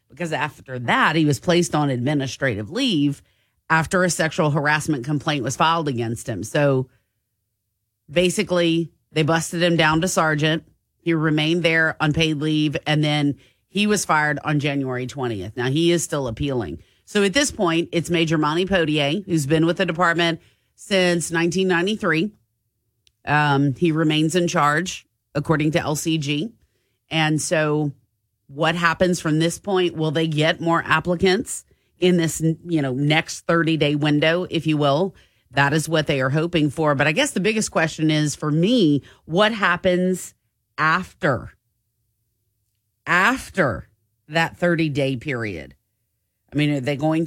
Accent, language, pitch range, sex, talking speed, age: American, English, 130-170 Hz, female, 150 wpm, 40-59